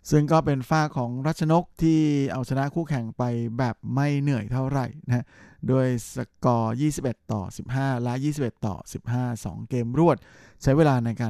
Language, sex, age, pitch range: Thai, male, 20-39, 115-135 Hz